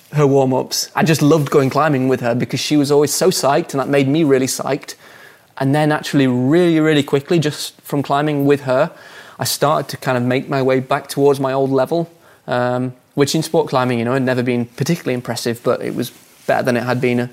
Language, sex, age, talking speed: English, male, 20-39, 230 wpm